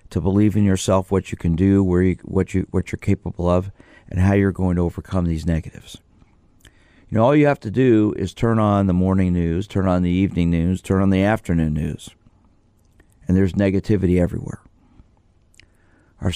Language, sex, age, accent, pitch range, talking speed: English, male, 50-69, American, 90-105 Hz, 190 wpm